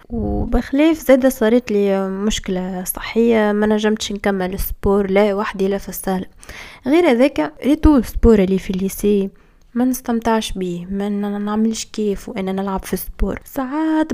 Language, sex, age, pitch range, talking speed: Arabic, female, 20-39, 200-230 Hz, 135 wpm